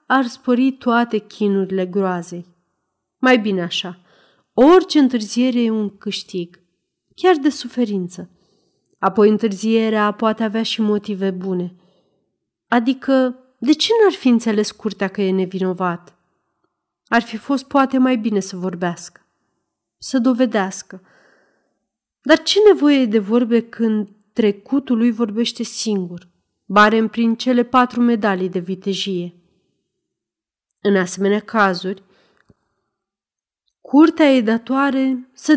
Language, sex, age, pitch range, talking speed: Romanian, female, 30-49, 190-260 Hz, 115 wpm